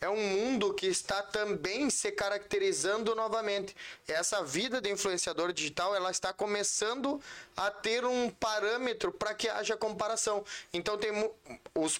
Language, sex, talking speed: Portuguese, male, 140 wpm